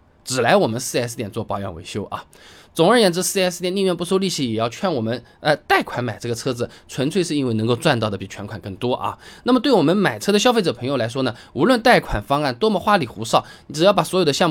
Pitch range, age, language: 120-190 Hz, 20-39, Chinese